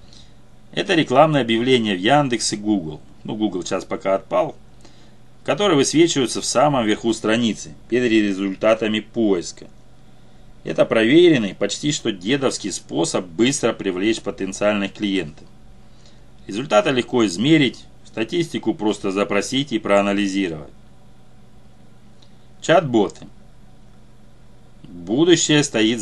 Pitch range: 100-120 Hz